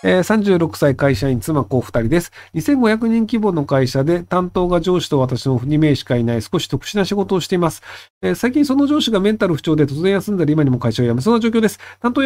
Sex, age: male, 40-59